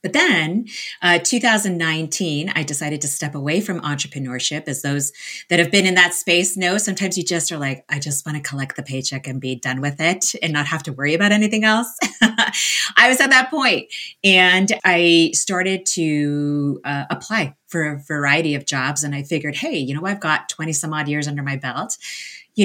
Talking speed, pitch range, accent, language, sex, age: 205 wpm, 145-180 Hz, American, English, female, 30-49